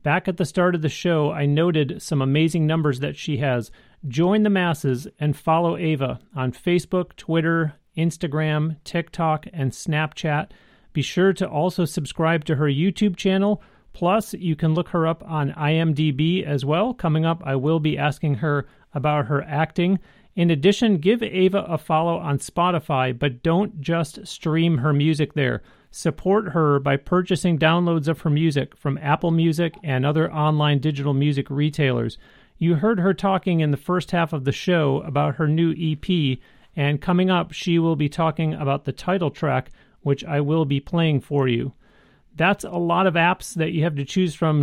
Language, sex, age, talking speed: English, male, 30-49, 180 wpm